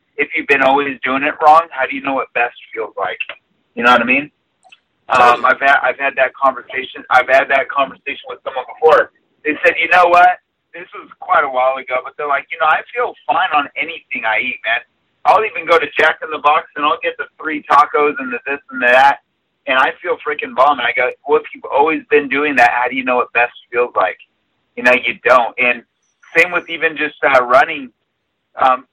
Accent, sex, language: American, male, English